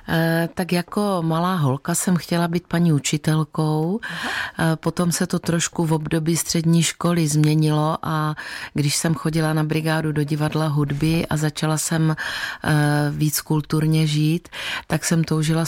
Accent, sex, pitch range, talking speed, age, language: native, female, 145-160 Hz, 140 wpm, 30-49, Czech